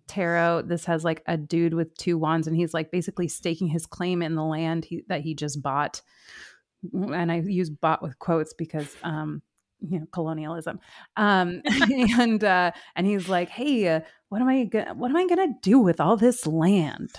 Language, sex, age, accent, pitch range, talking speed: English, female, 20-39, American, 165-220 Hz, 190 wpm